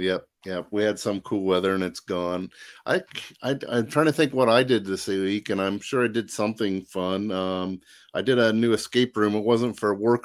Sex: male